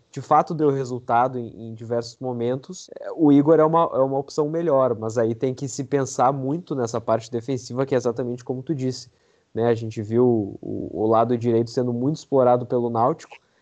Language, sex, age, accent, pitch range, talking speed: Portuguese, male, 20-39, Brazilian, 115-140 Hz, 195 wpm